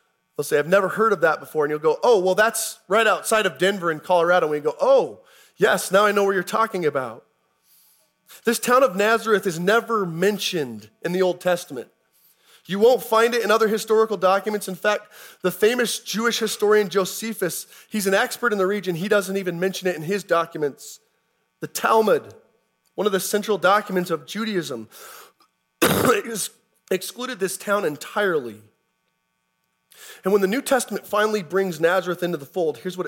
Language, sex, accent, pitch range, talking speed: English, male, American, 160-215 Hz, 180 wpm